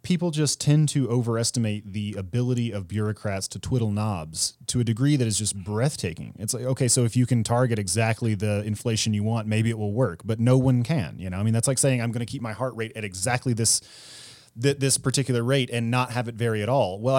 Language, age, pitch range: English, 30-49, 105-130 Hz